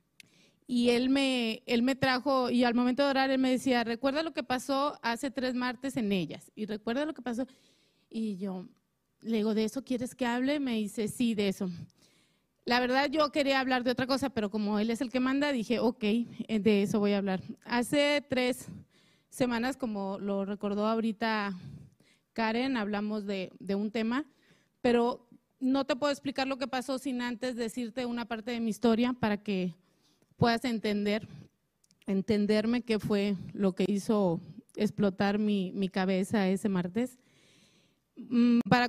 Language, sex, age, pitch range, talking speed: Spanish, female, 30-49, 210-255 Hz, 170 wpm